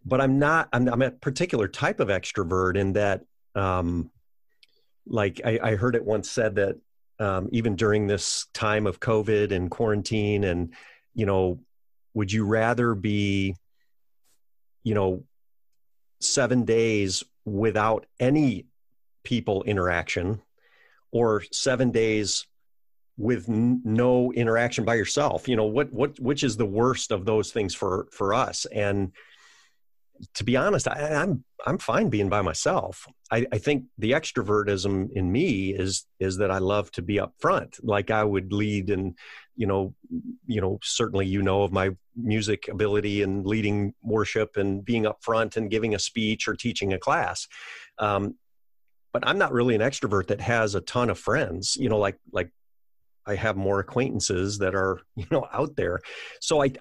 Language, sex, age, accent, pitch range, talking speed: English, male, 40-59, American, 95-115 Hz, 165 wpm